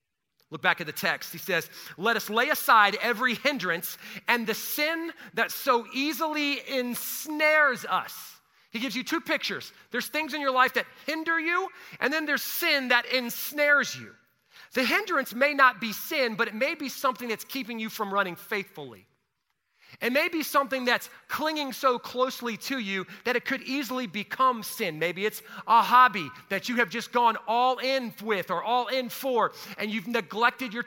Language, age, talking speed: English, 40-59, 180 wpm